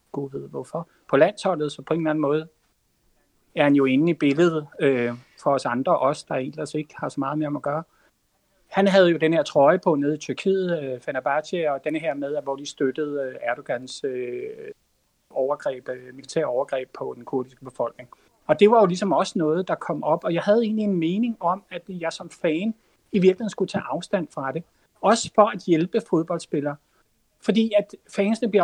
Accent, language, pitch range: native, Danish, 155-205 Hz